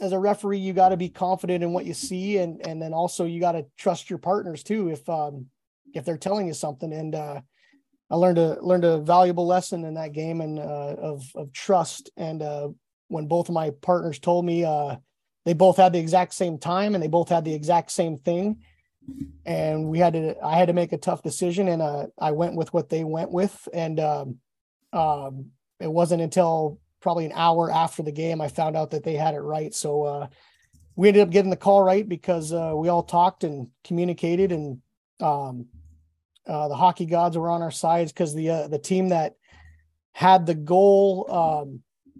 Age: 30-49